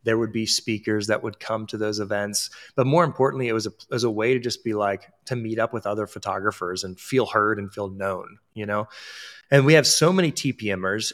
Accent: American